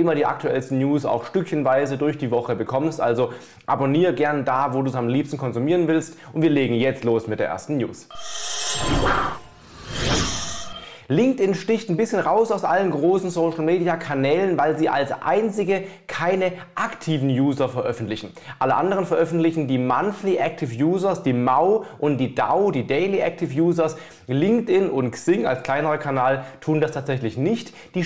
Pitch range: 135-175 Hz